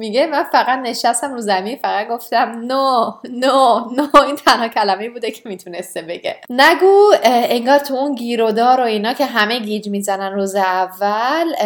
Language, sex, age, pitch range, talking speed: Persian, female, 20-39, 195-255 Hz, 155 wpm